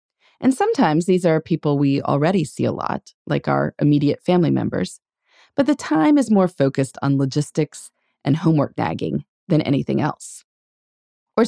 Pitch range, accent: 150-230 Hz, American